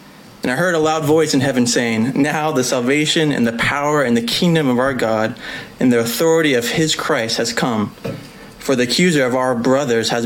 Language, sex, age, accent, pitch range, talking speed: English, male, 30-49, American, 120-150 Hz, 210 wpm